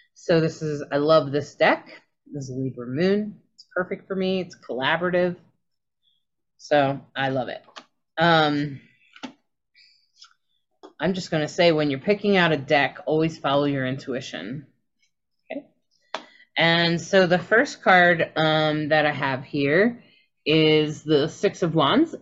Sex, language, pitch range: female, English, 145-185 Hz